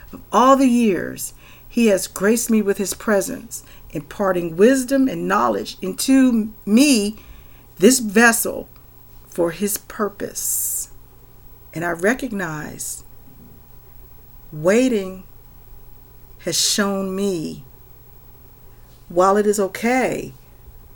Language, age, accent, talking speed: English, 50-69, American, 90 wpm